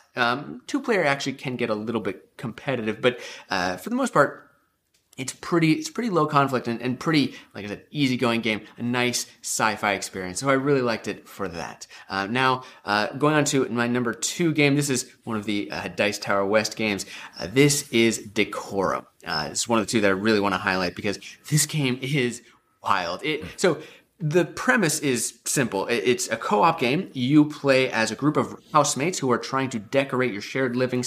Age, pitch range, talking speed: 30-49, 110-140 Hz, 210 wpm